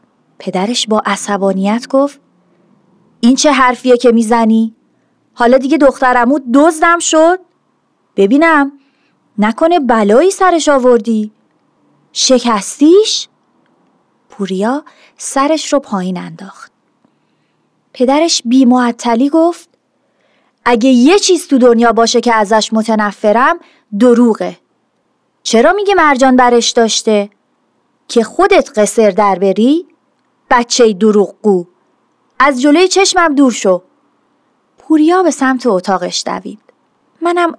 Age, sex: 30-49, female